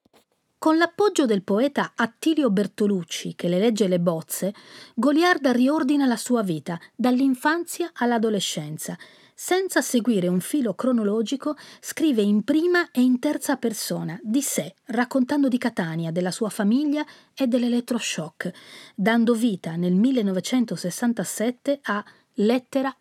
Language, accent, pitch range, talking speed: Italian, native, 190-275 Hz, 120 wpm